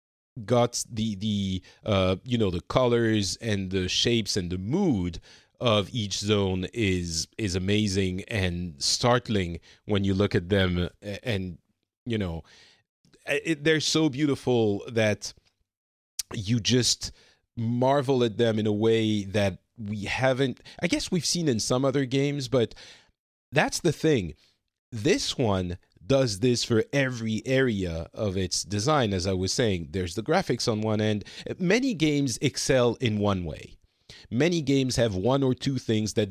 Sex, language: male, English